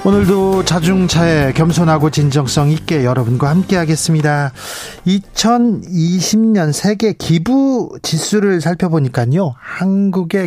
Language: Korean